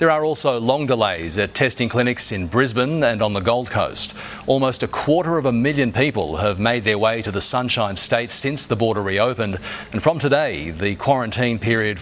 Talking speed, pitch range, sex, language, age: 200 wpm, 105-130 Hz, male, English, 40-59